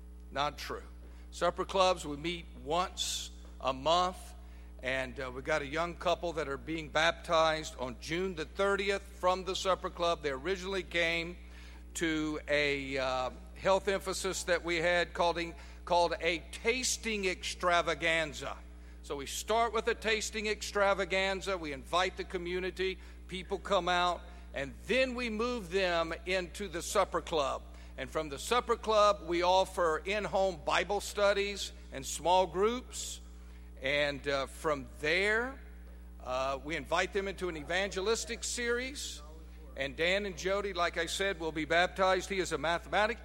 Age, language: 50-69, English